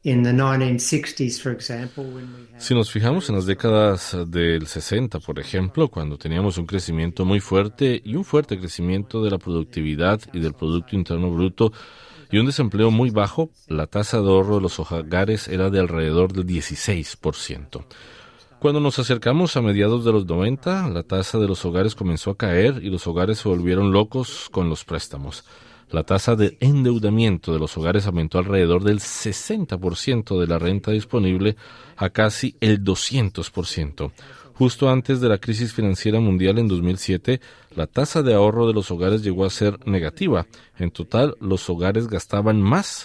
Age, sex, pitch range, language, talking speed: 40-59, male, 90-120 Hz, Spanish, 160 wpm